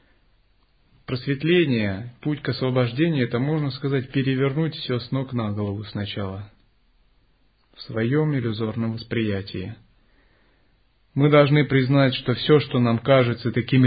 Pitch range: 110-140 Hz